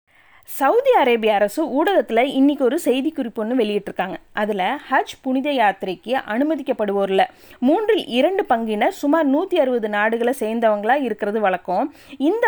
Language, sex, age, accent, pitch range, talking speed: Tamil, female, 20-39, native, 215-310 Hz, 110 wpm